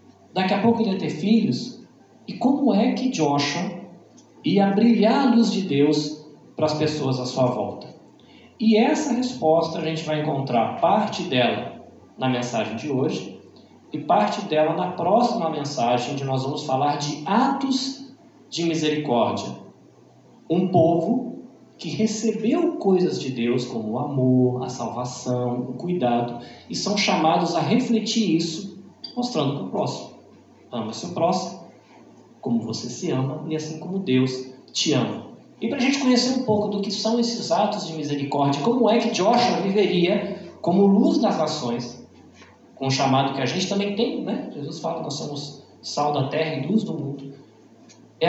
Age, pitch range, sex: 40-59, 135-210 Hz, male